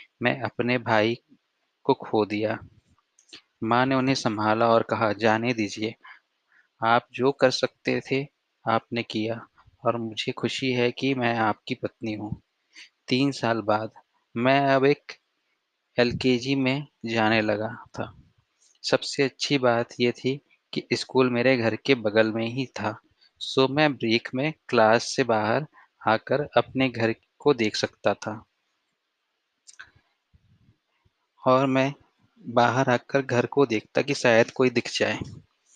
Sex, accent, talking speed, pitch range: male, native, 135 wpm, 110-130 Hz